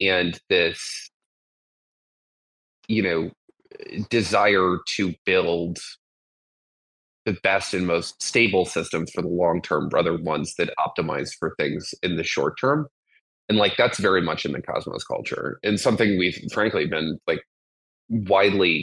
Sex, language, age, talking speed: male, English, 20-39, 135 wpm